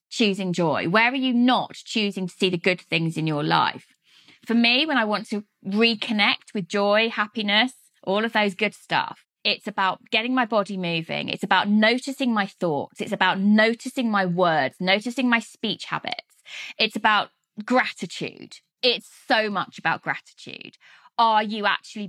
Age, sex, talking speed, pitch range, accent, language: 20-39, female, 165 wpm, 180-225 Hz, British, English